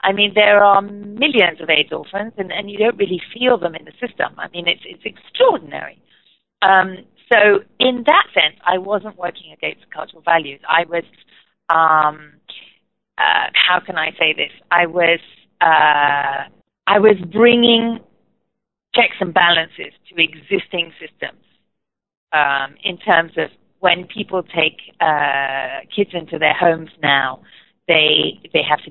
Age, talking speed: 40-59, 145 wpm